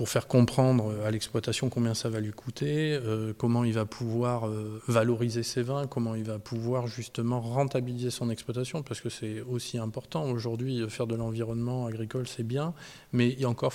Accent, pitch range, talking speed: French, 115-135 Hz, 180 wpm